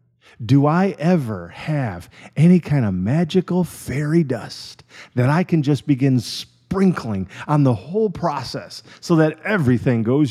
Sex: male